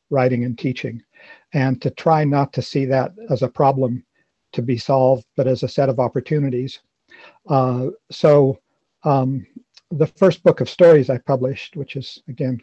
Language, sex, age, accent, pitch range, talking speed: English, male, 50-69, American, 130-155 Hz, 165 wpm